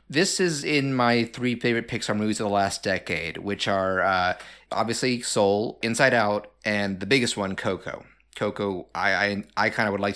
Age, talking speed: 30-49, 190 wpm